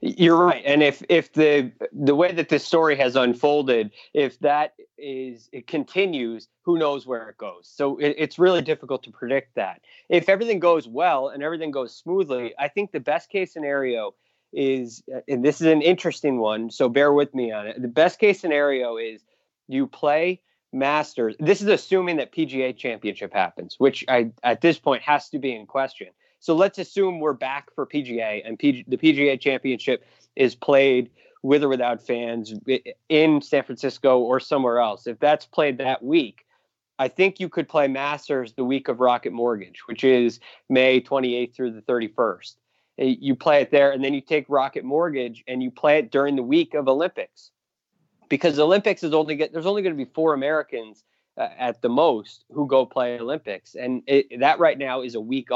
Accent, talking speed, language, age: American, 185 wpm, English, 30-49